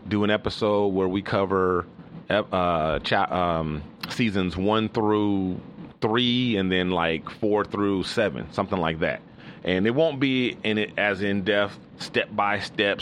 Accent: American